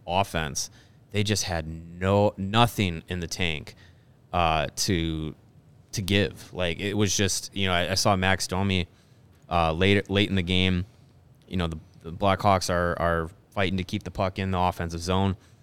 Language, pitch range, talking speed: English, 90-110 Hz, 175 wpm